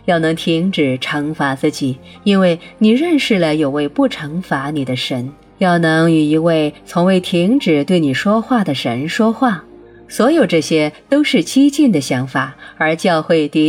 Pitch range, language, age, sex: 155-205 Hz, Chinese, 30-49, female